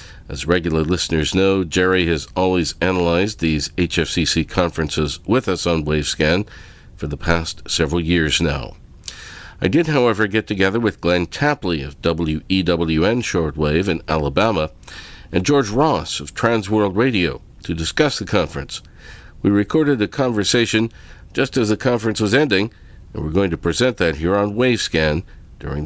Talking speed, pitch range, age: 150 wpm, 75-100 Hz, 50-69